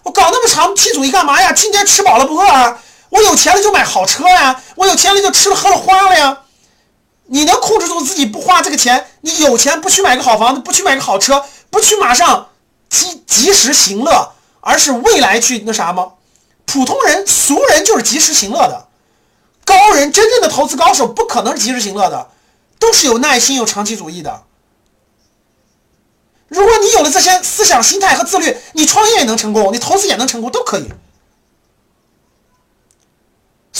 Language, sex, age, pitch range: Chinese, male, 30-49, 255-395 Hz